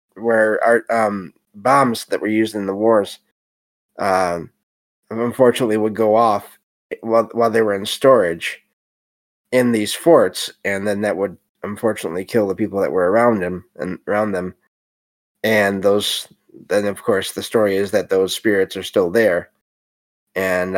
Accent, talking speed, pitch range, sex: American, 160 wpm, 95-120 Hz, male